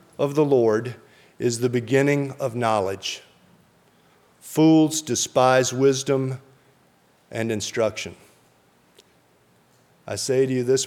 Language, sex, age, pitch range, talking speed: English, male, 50-69, 110-140 Hz, 100 wpm